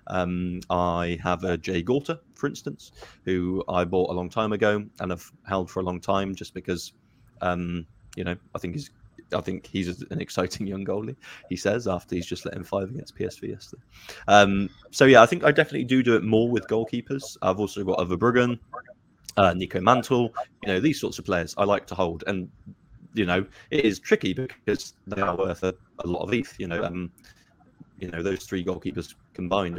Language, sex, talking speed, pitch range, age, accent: English, male, 210 wpm, 90-105 Hz, 20-39, British